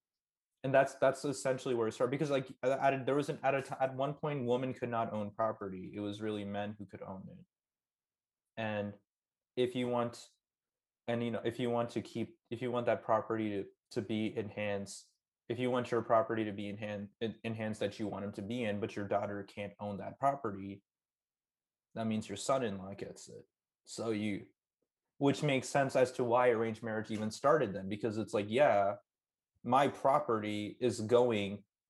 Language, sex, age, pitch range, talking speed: English, male, 20-39, 105-125 Hz, 195 wpm